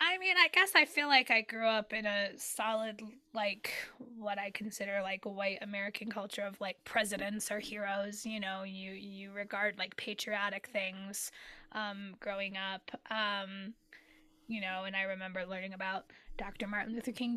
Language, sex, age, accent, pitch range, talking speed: English, female, 10-29, American, 200-235 Hz, 175 wpm